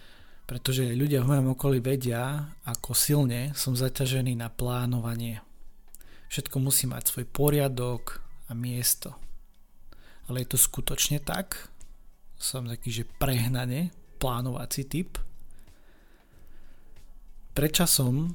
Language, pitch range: Slovak, 120-140 Hz